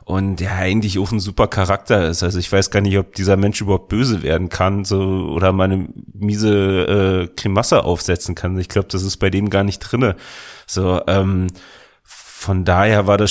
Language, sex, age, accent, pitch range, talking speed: German, male, 30-49, German, 95-105 Hz, 200 wpm